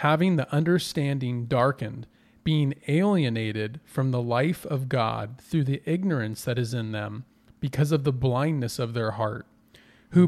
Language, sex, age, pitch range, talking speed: English, male, 40-59, 120-160 Hz, 150 wpm